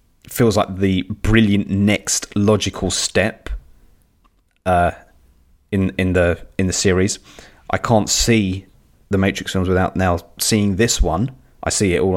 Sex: male